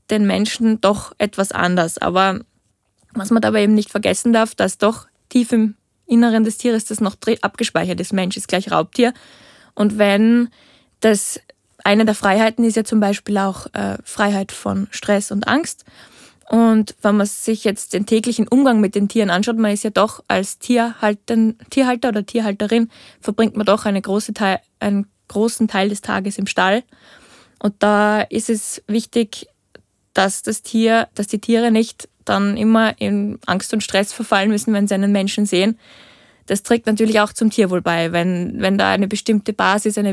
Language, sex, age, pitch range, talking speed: German, female, 20-39, 200-225 Hz, 175 wpm